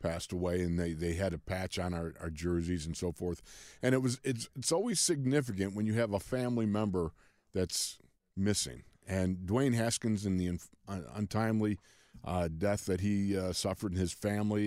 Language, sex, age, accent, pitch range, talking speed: English, male, 50-69, American, 95-115 Hz, 185 wpm